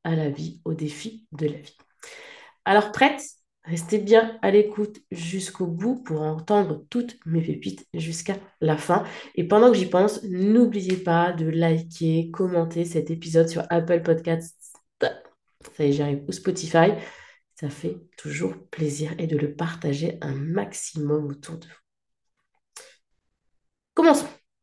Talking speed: 145 wpm